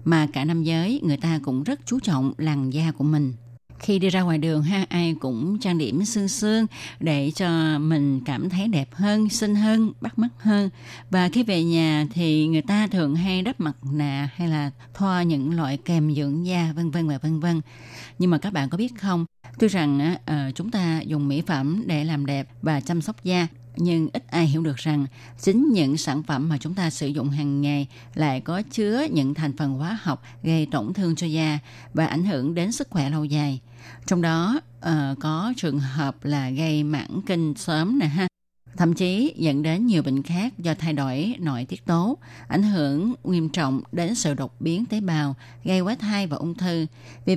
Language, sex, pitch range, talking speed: Vietnamese, female, 145-185 Hz, 205 wpm